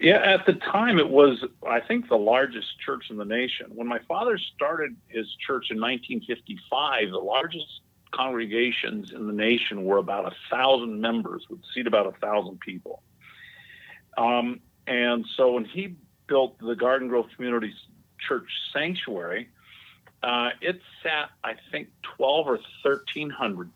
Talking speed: 145 wpm